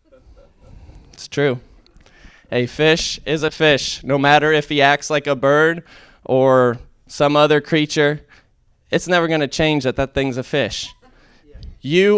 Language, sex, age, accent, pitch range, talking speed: English, male, 20-39, American, 110-145 Hz, 145 wpm